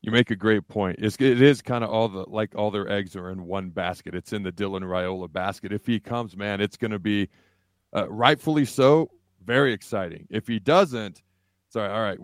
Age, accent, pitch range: 40-59, American, 95-120 Hz